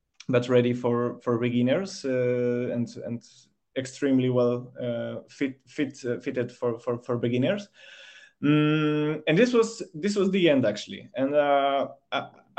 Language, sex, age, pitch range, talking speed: French, male, 20-39, 125-150 Hz, 145 wpm